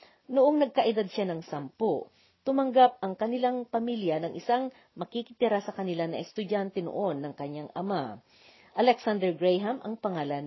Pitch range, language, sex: 165-240 Hz, Filipino, female